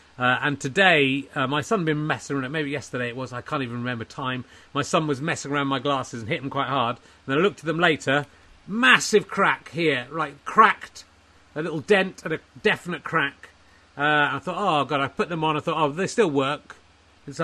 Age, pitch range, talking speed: 30-49, 130-170 Hz, 225 wpm